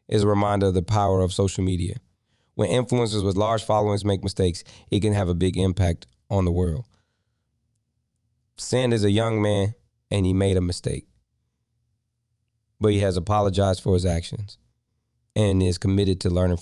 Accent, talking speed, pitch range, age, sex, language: American, 170 wpm, 95-115 Hz, 20-39, male, English